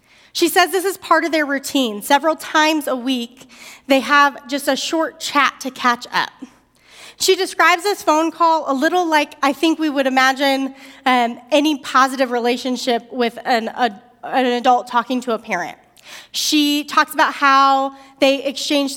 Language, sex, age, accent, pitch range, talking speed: English, female, 30-49, American, 245-295 Hz, 165 wpm